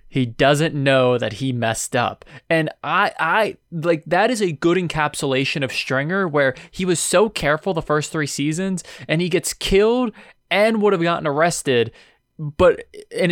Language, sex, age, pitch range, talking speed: English, male, 20-39, 125-160 Hz, 170 wpm